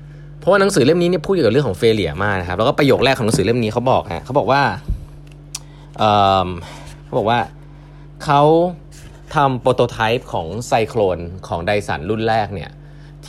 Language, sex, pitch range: Thai, male, 95-135 Hz